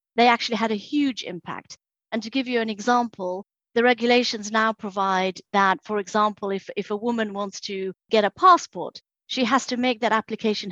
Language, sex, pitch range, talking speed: English, female, 195-230 Hz, 190 wpm